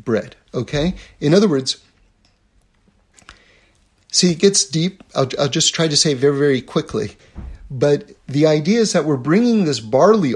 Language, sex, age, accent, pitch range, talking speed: English, male, 50-69, American, 125-180 Hz, 155 wpm